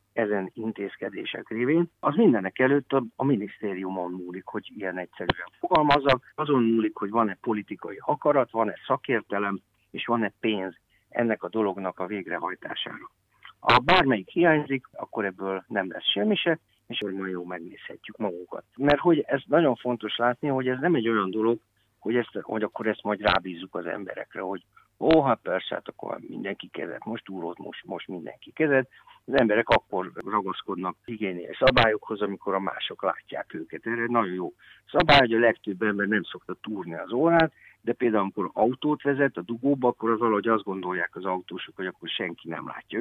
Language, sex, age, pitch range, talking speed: Hungarian, male, 50-69, 100-135 Hz, 175 wpm